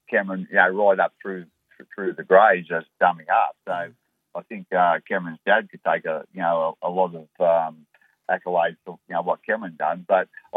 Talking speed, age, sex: 205 wpm, 50-69, male